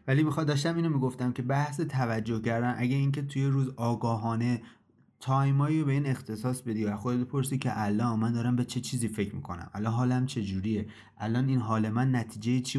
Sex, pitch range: male, 105-125 Hz